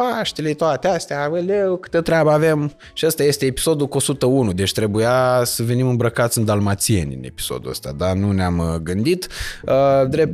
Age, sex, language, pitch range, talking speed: 20-39, male, Romanian, 95-140 Hz, 165 wpm